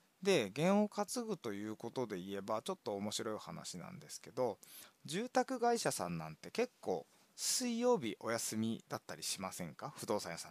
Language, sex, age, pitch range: Japanese, male, 20-39, 110-175 Hz